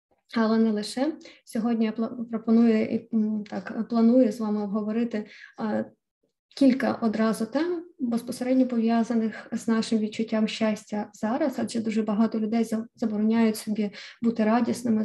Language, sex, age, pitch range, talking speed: Ukrainian, female, 20-39, 220-240 Hz, 115 wpm